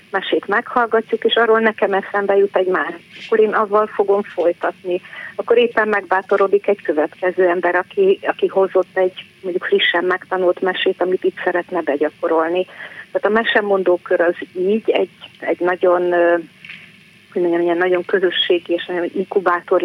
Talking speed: 140 wpm